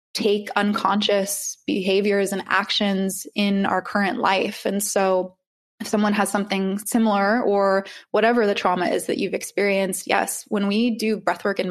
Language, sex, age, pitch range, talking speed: English, female, 20-39, 190-220 Hz, 155 wpm